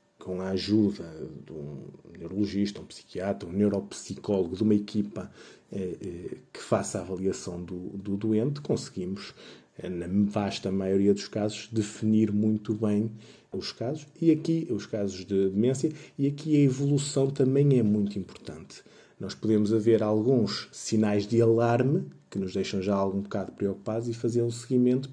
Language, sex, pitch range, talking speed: Portuguese, male, 100-130 Hz, 155 wpm